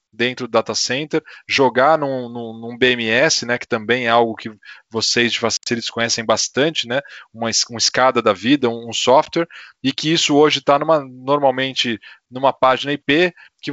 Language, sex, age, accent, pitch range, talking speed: Portuguese, male, 20-39, Brazilian, 125-155 Hz, 170 wpm